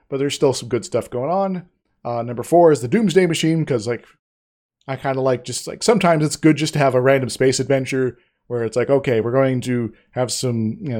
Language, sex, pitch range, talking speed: English, male, 120-150 Hz, 235 wpm